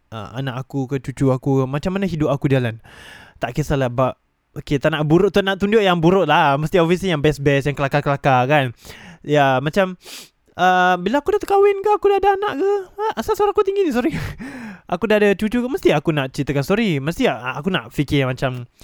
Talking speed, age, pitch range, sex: 215 wpm, 20-39, 135-205 Hz, male